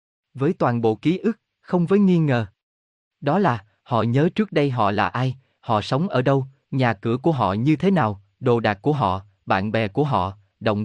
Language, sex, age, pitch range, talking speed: Vietnamese, male, 20-39, 110-155 Hz, 210 wpm